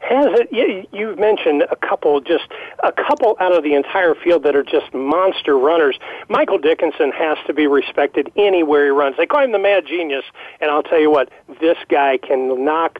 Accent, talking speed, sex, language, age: American, 205 wpm, male, English, 40-59